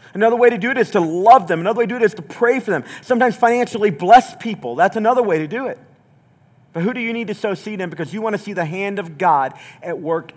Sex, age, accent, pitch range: male, 40-59, American, 135-165 Hz